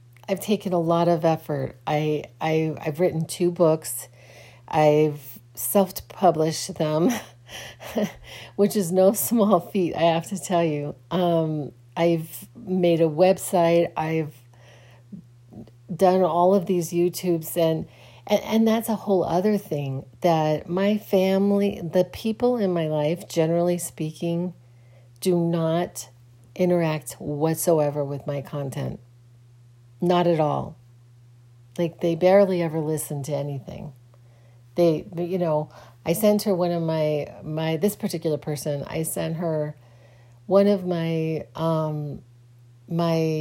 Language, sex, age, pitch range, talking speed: English, female, 40-59, 120-180 Hz, 125 wpm